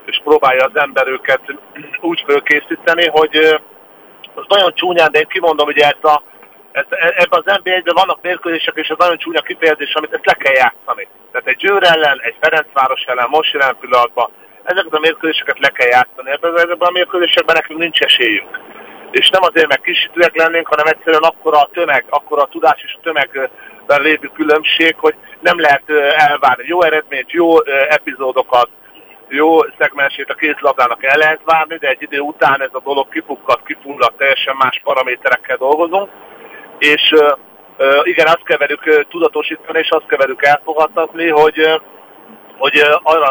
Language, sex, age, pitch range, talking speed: Hungarian, male, 50-69, 140-170 Hz, 155 wpm